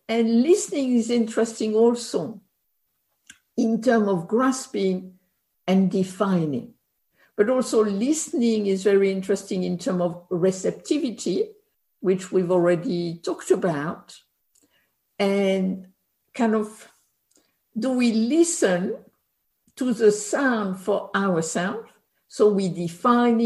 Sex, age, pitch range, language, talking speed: female, 60-79, 190-240 Hz, English, 100 wpm